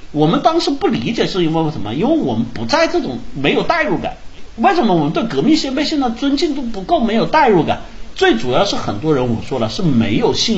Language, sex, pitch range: Chinese, male, 150-250 Hz